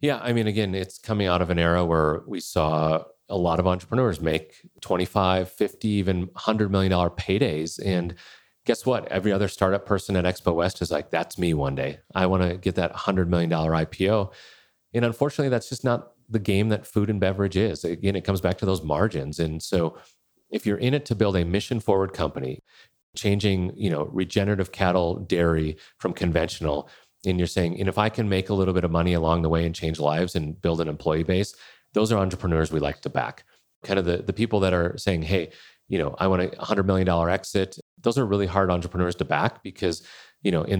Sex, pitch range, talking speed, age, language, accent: male, 85-105 Hz, 215 wpm, 40-59, English, American